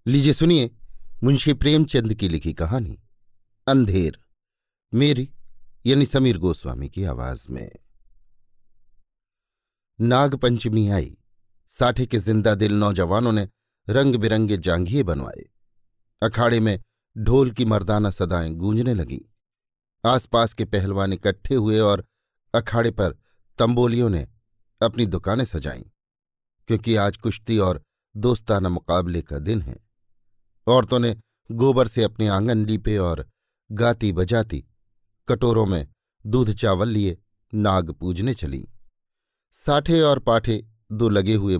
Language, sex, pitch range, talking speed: Hindi, male, 100-120 Hz, 120 wpm